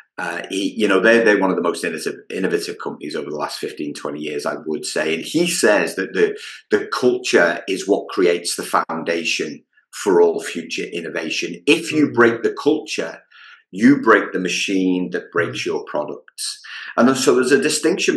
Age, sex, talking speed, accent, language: 30-49, male, 185 wpm, British, English